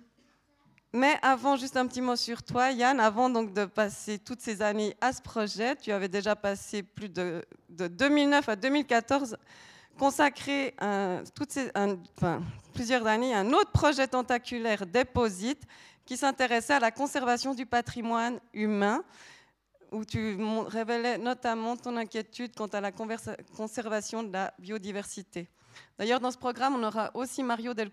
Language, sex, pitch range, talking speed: French, female, 205-255 Hz, 160 wpm